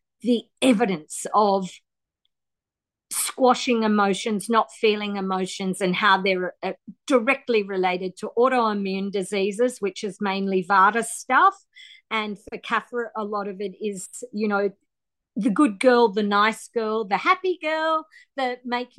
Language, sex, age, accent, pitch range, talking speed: English, female, 50-69, Australian, 205-275 Hz, 135 wpm